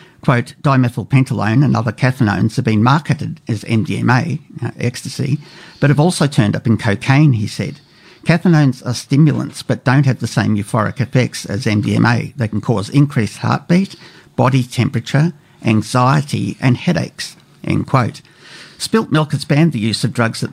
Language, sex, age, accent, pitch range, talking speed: English, male, 50-69, Australian, 115-150 Hz, 160 wpm